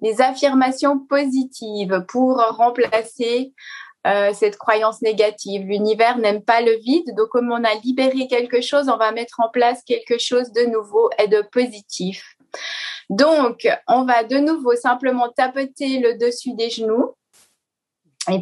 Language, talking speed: French, 145 wpm